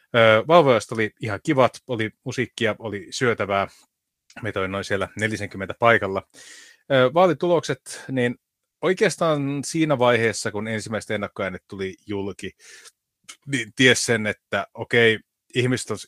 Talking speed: 120 wpm